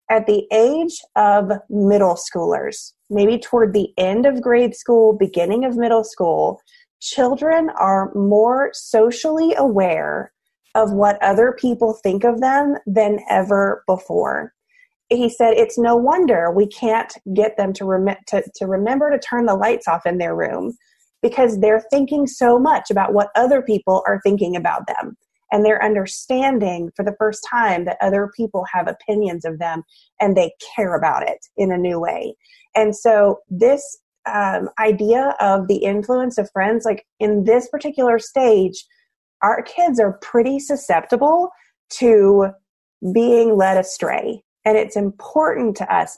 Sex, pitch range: female, 200-250 Hz